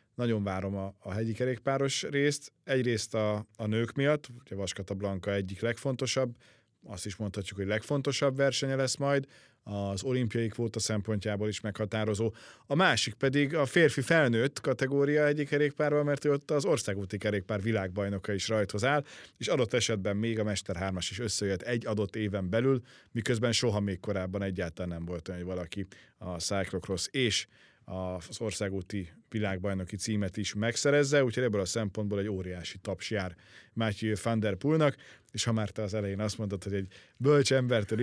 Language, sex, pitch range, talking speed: Hungarian, male, 100-130 Hz, 165 wpm